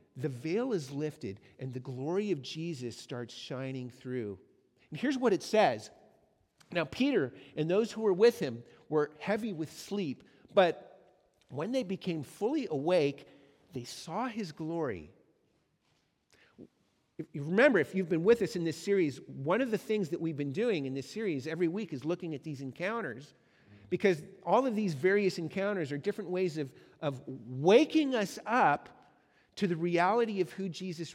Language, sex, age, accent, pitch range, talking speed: English, male, 50-69, American, 145-205 Hz, 165 wpm